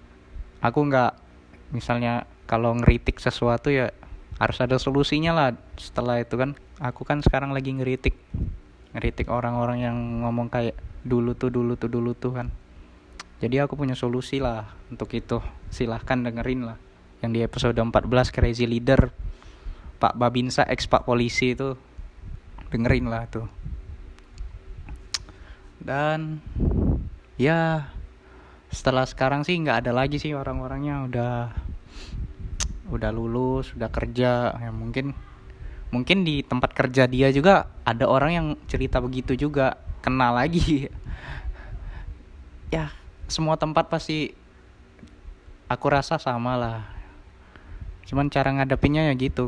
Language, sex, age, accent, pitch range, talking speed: Indonesian, male, 20-39, native, 95-130 Hz, 120 wpm